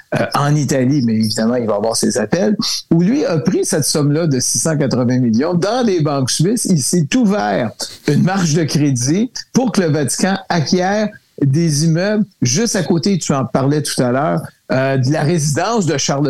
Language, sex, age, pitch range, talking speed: French, male, 60-79, 125-165 Hz, 190 wpm